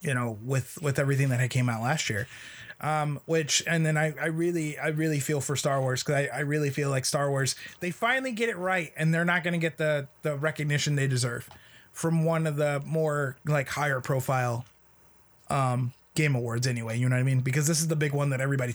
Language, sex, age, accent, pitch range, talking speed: English, male, 20-39, American, 135-155 Hz, 235 wpm